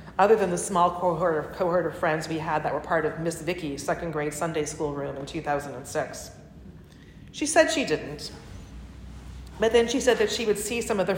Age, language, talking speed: 40-59, English, 210 wpm